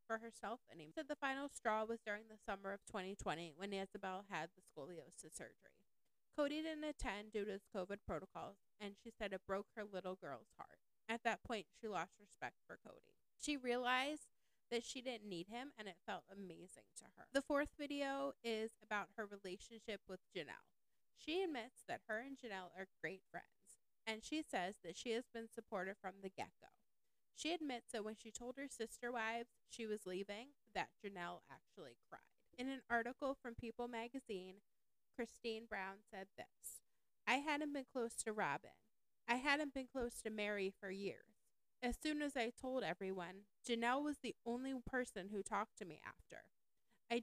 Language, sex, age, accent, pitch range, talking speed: English, female, 30-49, American, 195-250 Hz, 180 wpm